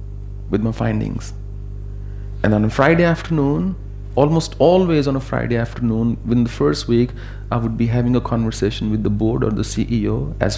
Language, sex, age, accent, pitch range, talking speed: English, male, 40-59, Indian, 100-125 Hz, 175 wpm